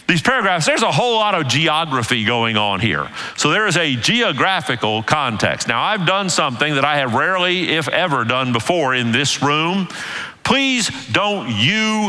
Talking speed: 175 wpm